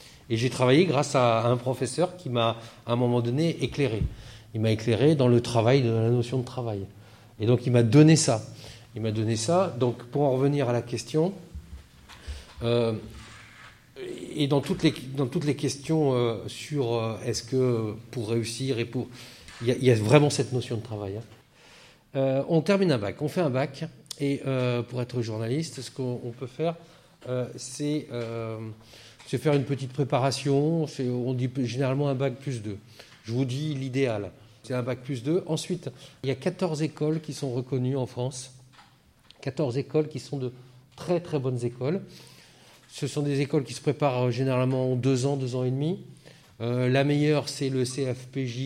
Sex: male